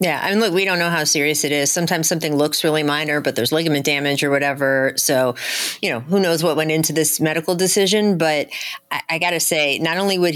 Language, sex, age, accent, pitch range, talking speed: English, female, 30-49, American, 155-200 Hz, 240 wpm